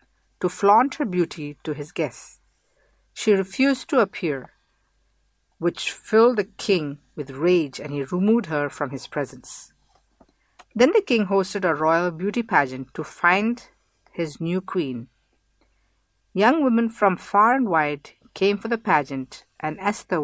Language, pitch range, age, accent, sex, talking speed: English, 145-200 Hz, 50-69, Indian, female, 145 wpm